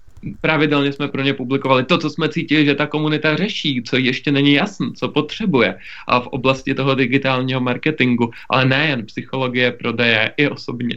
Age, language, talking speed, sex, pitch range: 20-39, Czech, 165 wpm, male, 125-150 Hz